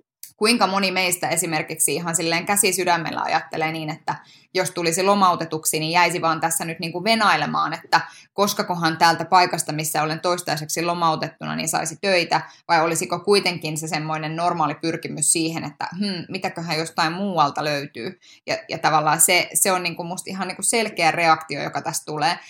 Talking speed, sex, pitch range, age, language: 170 wpm, female, 155-180 Hz, 20-39, Finnish